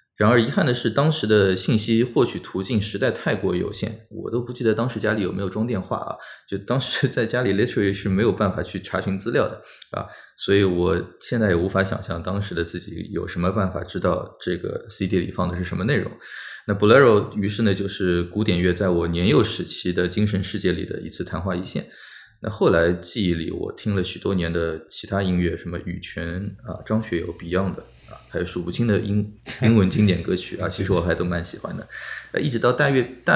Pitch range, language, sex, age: 90-105 Hz, Chinese, male, 20-39